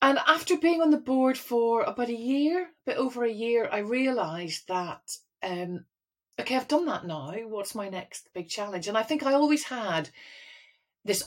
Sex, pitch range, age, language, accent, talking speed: female, 170-240 Hz, 40-59, English, British, 190 wpm